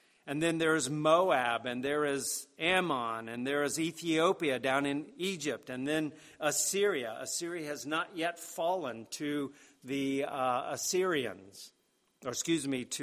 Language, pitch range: English, 130-160 Hz